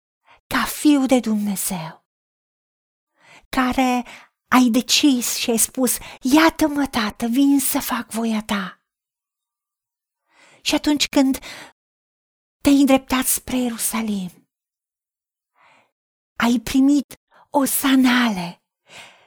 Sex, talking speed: female, 85 wpm